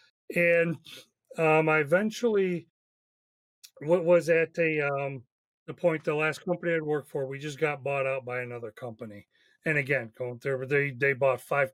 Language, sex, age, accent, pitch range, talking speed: English, male, 40-59, American, 135-170 Hz, 170 wpm